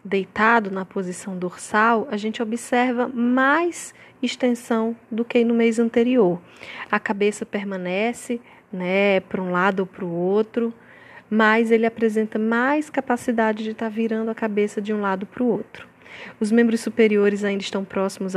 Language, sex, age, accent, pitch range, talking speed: Portuguese, female, 10-29, Brazilian, 200-245 Hz, 155 wpm